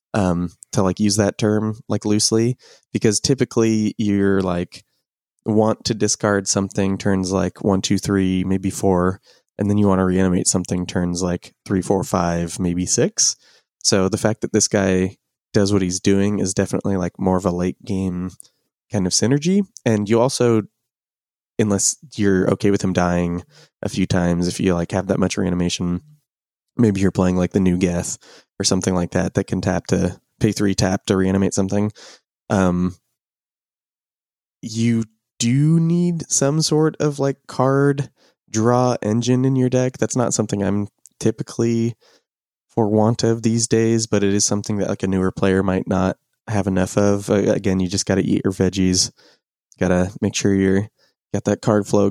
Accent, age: American, 20-39